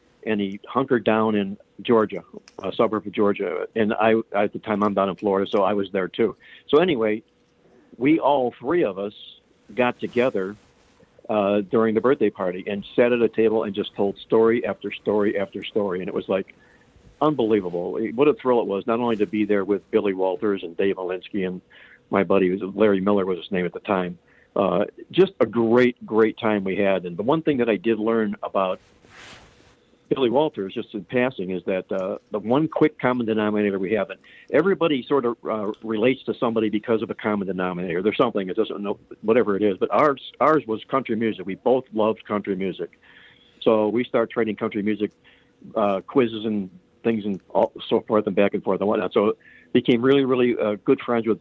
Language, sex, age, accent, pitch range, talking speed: English, male, 50-69, American, 100-115 Hz, 200 wpm